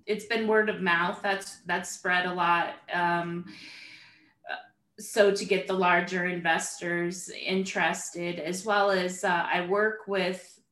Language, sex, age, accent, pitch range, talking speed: English, female, 20-39, American, 175-205 Hz, 140 wpm